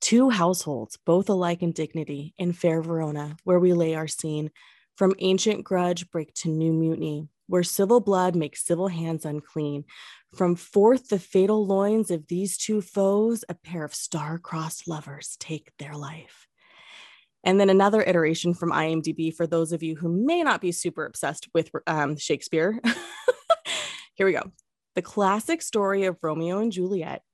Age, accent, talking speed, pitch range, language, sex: 20-39, American, 160 wpm, 155-195 Hz, English, female